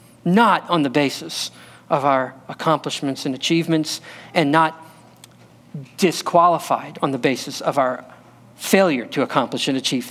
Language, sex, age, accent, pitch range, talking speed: English, male, 40-59, American, 135-210 Hz, 130 wpm